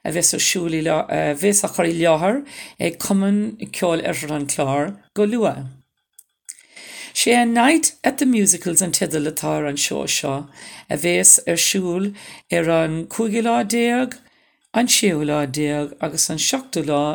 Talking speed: 100 wpm